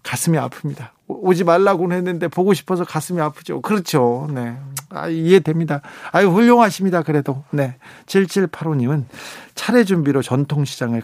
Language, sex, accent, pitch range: Korean, male, native, 130-165 Hz